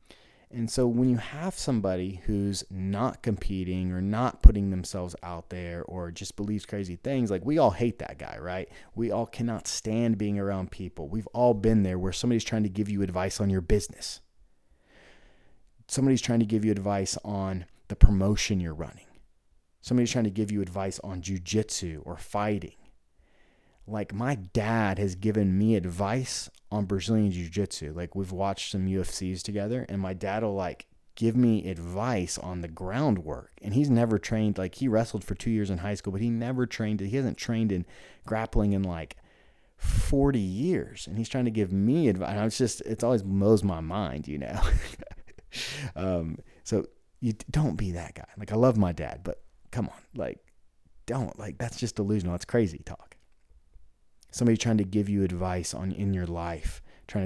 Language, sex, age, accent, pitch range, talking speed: English, male, 30-49, American, 90-110 Hz, 185 wpm